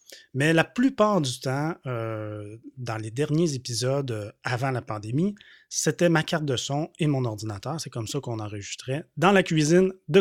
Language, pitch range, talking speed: French, 120-180 Hz, 175 wpm